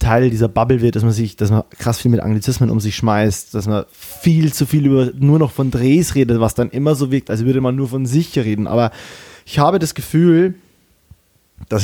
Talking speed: 230 wpm